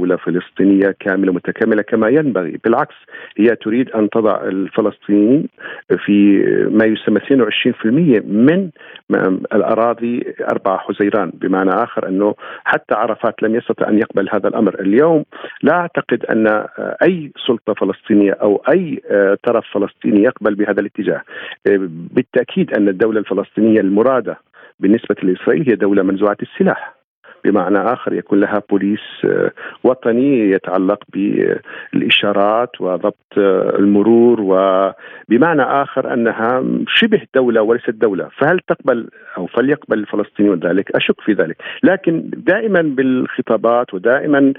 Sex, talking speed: male, 115 wpm